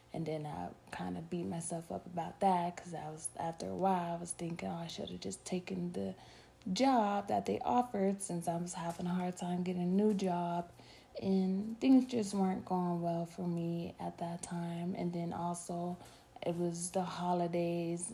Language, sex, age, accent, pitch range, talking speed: English, female, 20-39, American, 165-190 Hz, 185 wpm